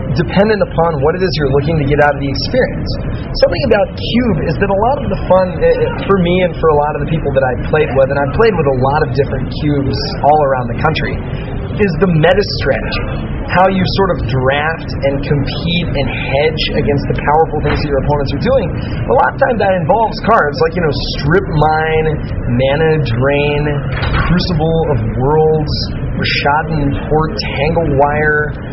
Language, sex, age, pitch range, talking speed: English, male, 30-49, 140-170 Hz, 195 wpm